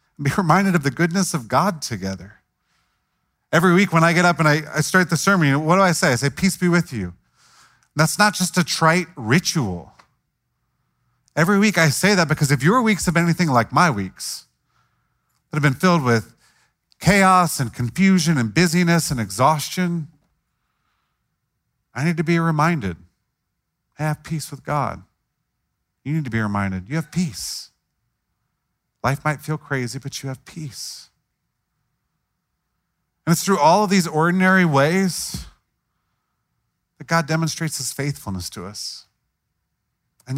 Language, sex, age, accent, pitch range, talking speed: English, male, 40-59, American, 115-170 Hz, 155 wpm